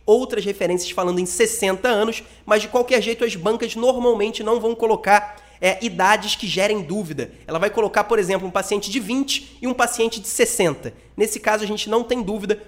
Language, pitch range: Portuguese, 200-235 Hz